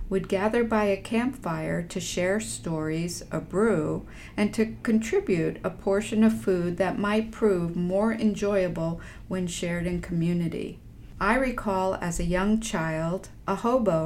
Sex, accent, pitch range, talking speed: female, American, 175-220 Hz, 145 wpm